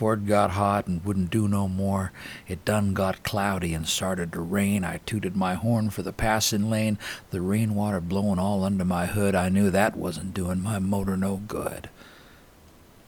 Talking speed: 185 wpm